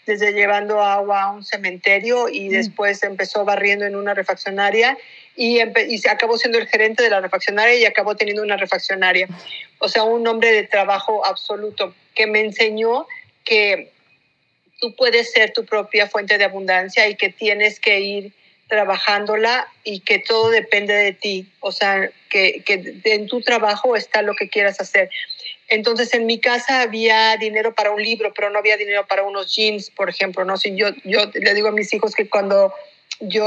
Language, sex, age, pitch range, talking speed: Spanish, female, 40-59, 200-230 Hz, 180 wpm